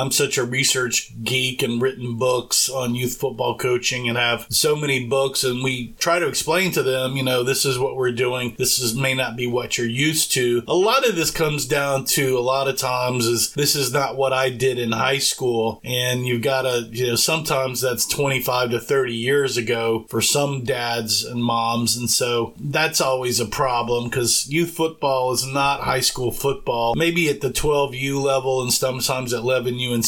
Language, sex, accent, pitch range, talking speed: English, male, American, 120-135 Hz, 205 wpm